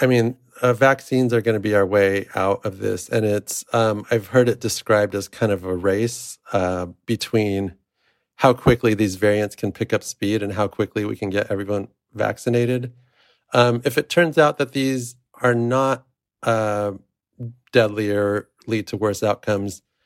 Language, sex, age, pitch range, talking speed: English, male, 40-59, 100-120 Hz, 175 wpm